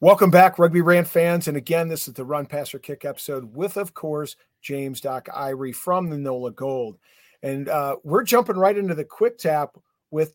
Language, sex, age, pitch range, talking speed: English, male, 40-59, 145-180 Hz, 195 wpm